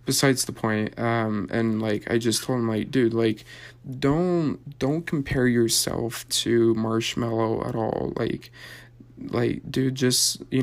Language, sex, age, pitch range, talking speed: English, male, 20-39, 115-130 Hz, 145 wpm